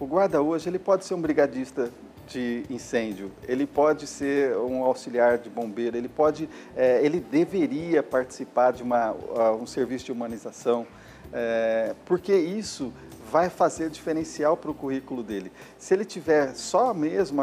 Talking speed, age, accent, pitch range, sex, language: 140 wpm, 40-59, Brazilian, 120-160 Hz, male, Portuguese